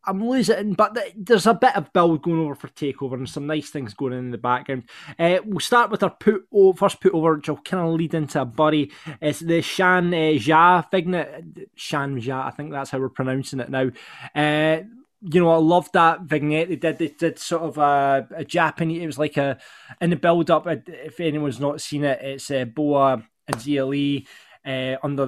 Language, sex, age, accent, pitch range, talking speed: English, male, 20-39, British, 145-185 Hz, 215 wpm